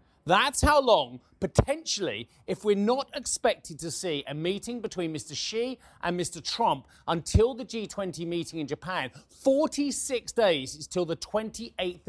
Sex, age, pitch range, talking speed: male, 30-49, 150-185 Hz, 150 wpm